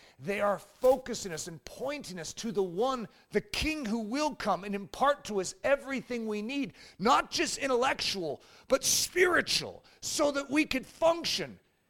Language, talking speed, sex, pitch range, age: English, 160 wpm, male, 175-270 Hz, 40-59